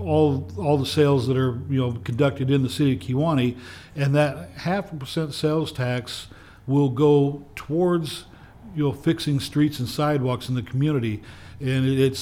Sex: male